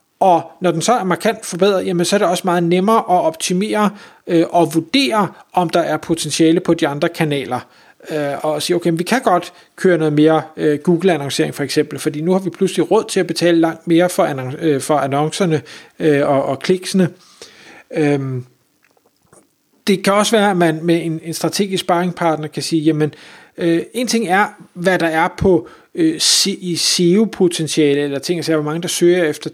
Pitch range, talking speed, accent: 155-195 Hz, 190 wpm, native